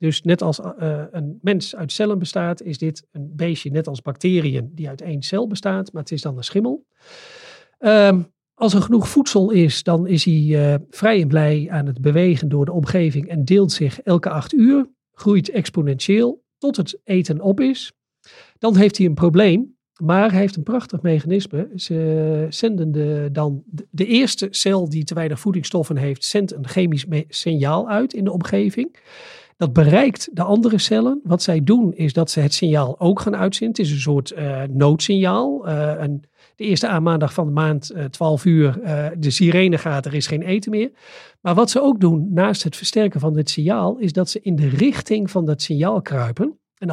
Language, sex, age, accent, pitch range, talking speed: Dutch, male, 40-59, Dutch, 155-200 Hz, 200 wpm